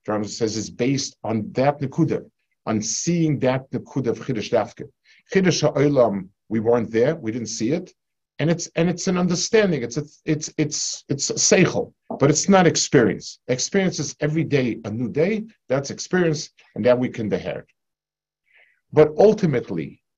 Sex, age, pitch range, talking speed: male, 50-69, 115-160 Hz, 160 wpm